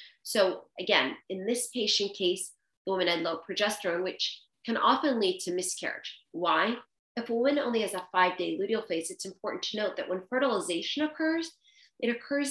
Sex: female